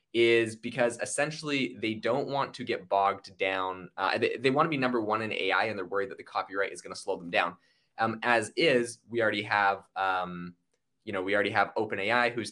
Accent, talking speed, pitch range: American, 220 wpm, 100-120 Hz